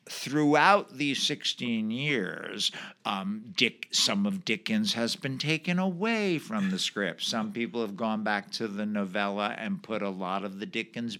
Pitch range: 110-175 Hz